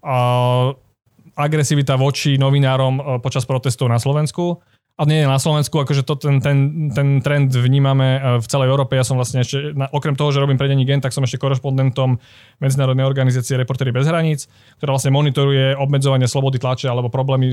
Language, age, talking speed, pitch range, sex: Slovak, 20-39, 170 wpm, 130-145 Hz, male